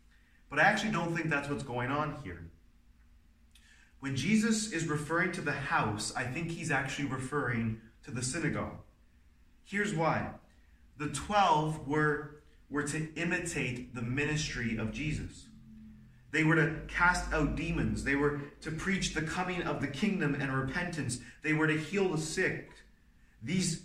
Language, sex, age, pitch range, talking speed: English, male, 30-49, 130-175 Hz, 155 wpm